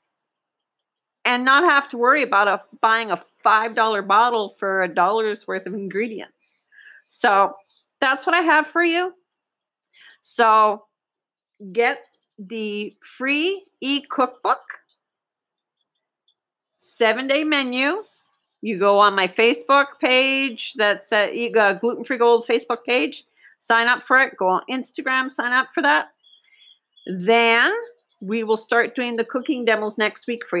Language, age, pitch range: English, 40-59, 210-280 Hz